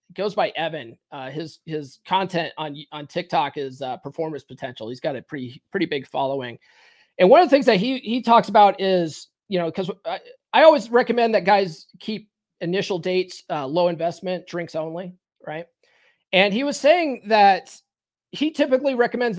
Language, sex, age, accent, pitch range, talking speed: English, male, 30-49, American, 165-210 Hz, 180 wpm